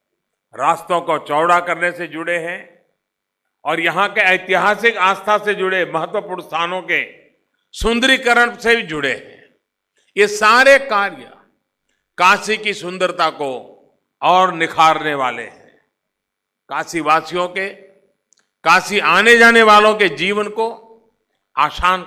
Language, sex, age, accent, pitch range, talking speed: Hindi, male, 50-69, native, 155-210 Hz, 115 wpm